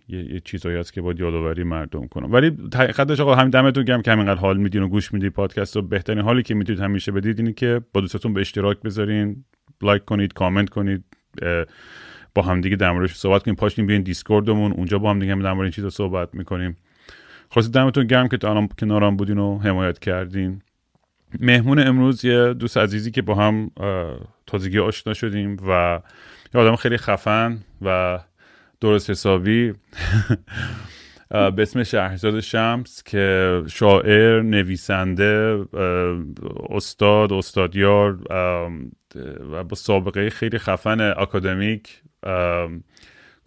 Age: 30-49